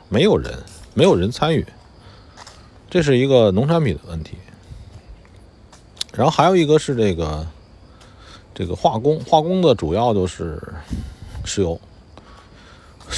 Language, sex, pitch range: Chinese, male, 90-135 Hz